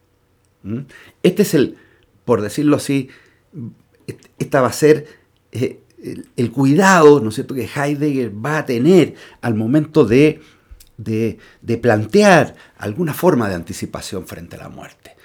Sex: male